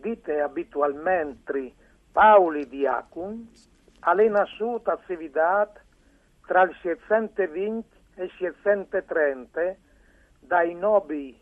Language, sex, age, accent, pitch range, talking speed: Italian, male, 60-79, native, 170-215 Hz, 90 wpm